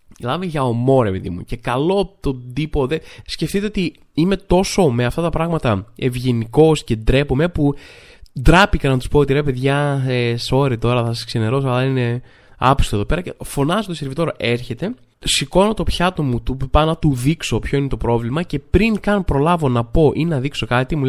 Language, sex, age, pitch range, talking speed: Greek, male, 20-39, 125-190 Hz, 195 wpm